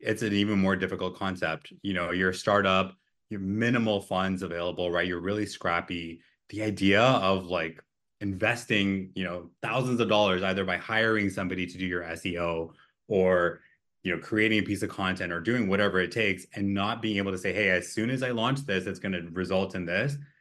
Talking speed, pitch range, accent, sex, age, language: 205 wpm, 90-105 Hz, American, male, 20-39, English